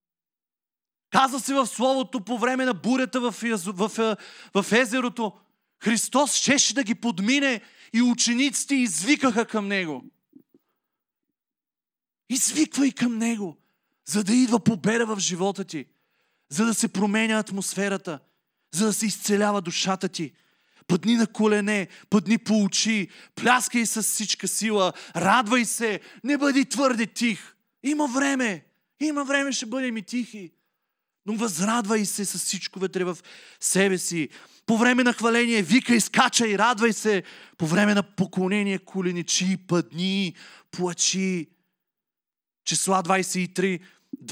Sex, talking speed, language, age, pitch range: male, 130 wpm, Bulgarian, 30-49, 190-245 Hz